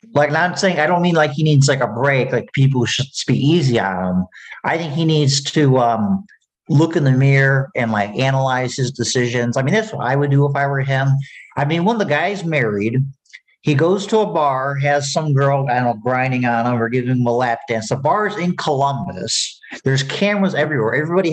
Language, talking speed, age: English, 225 wpm, 50-69